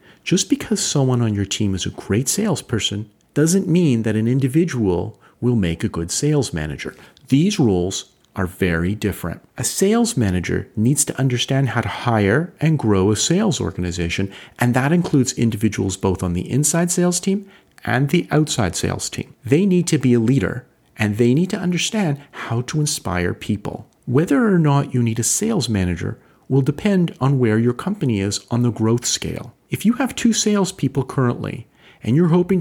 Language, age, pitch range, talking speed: English, 40-59, 110-160 Hz, 180 wpm